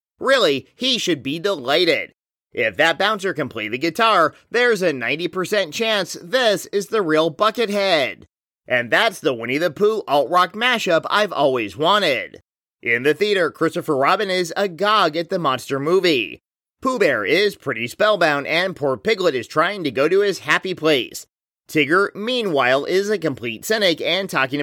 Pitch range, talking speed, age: 155-220 Hz, 165 wpm, 30-49